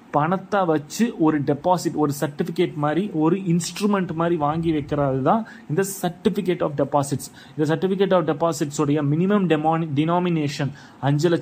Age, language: 30-49, English